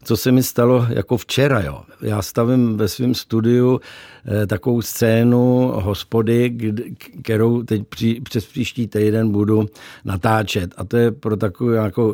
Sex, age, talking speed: male, 60-79, 155 wpm